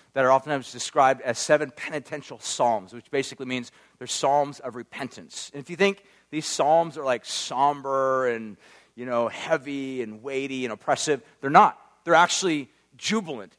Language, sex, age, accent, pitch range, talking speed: English, male, 40-59, American, 130-200 Hz, 165 wpm